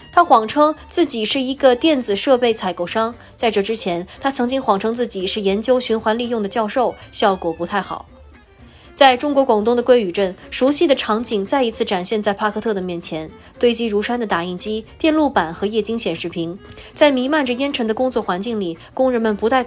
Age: 20-39